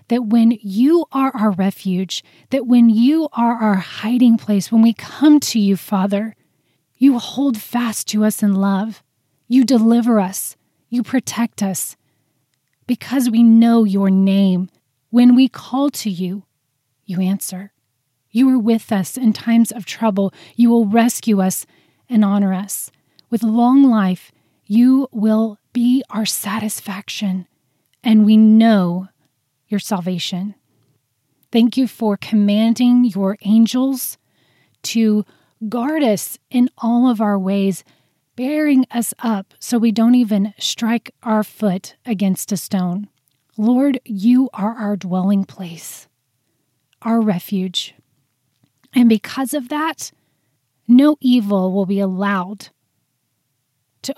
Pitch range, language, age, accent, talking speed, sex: 185-235 Hz, English, 30-49, American, 130 wpm, female